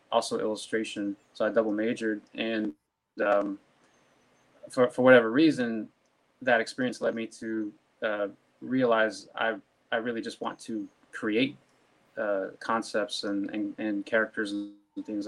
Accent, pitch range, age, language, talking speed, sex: American, 105-115 Hz, 20-39, English, 135 wpm, male